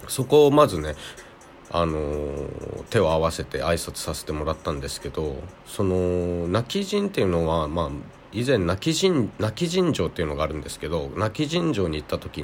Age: 40-59